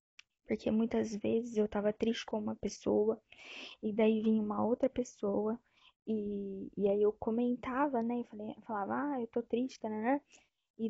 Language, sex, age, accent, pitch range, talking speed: Portuguese, female, 10-29, Brazilian, 205-230 Hz, 175 wpm